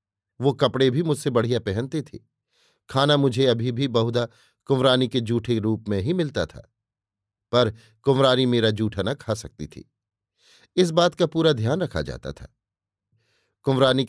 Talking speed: 160 wpm